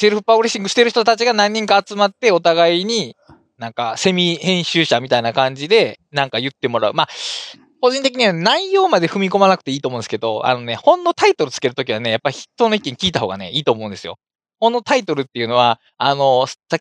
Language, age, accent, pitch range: Japanese, 20-39, native, 145-240 Hz